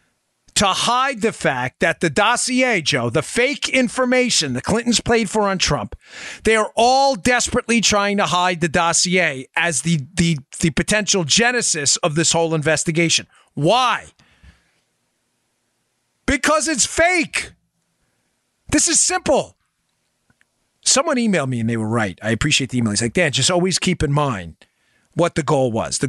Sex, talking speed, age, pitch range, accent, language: male, 155 wpm, 40-59, 140-225 Hz, American, English